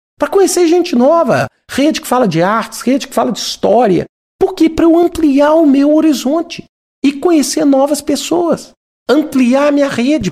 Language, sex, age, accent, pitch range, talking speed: Portuguese, male, 50-69, Brazilian, 180-245 Hz, 175 wpm